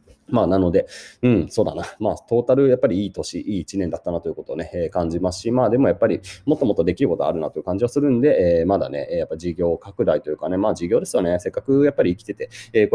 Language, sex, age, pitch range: Japanese, male, 30-49, 100-165 Hz